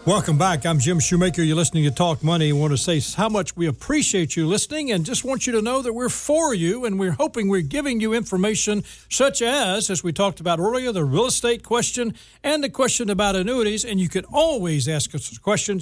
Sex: male